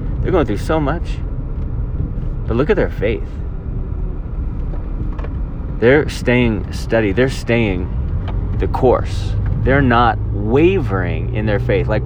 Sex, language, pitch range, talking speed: male, English, 80-115 Hz, 120 wpm